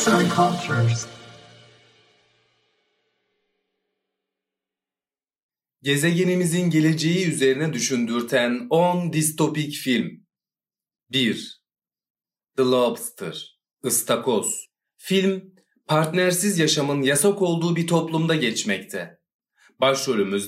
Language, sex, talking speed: Turkish, male, 60 wpm